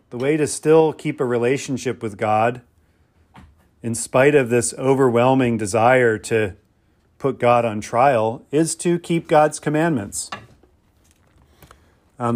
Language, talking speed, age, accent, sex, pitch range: English, 125 wpm, 40-59, American, male, 110-140 Hz